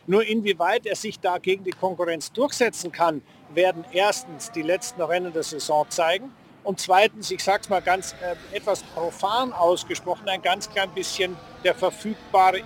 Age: 50-69